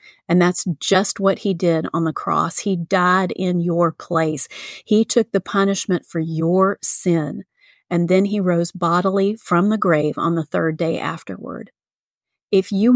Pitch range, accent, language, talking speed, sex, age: 175-210 Hz, American, English, 165 wpm, female, 40-59